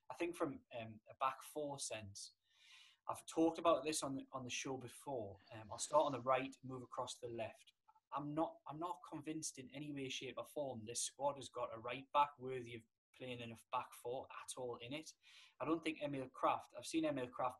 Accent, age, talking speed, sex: British, 10-29, 225 wpm, male